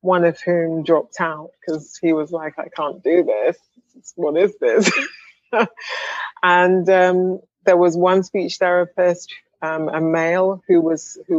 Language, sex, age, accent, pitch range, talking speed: English, female, 30-49, British, 160-190 Hz, 155 wpm